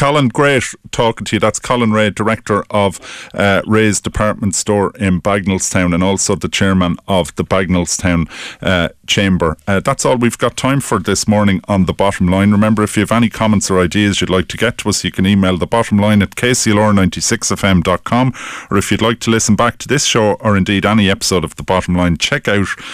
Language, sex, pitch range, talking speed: English, male, 90-115 Hz, 205 wpm